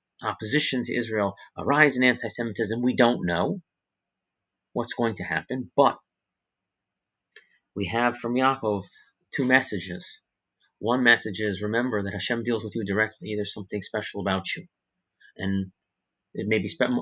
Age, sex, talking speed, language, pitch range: 30-49, male, 145 wpm, English, 100-120 Hz